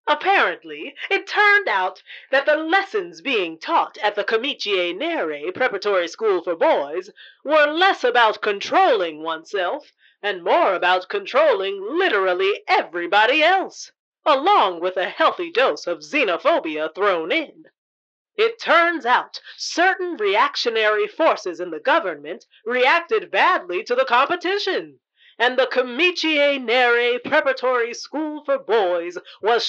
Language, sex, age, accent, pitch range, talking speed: English, female, 30-49, American, 230-370 Hz, 125 wpm